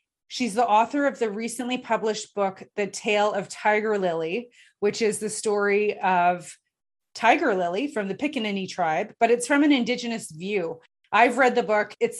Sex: female